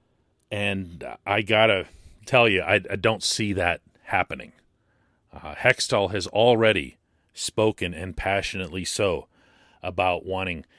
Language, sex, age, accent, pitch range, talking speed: English, male, 40-59, American, 95-120 Hz, 120 wpm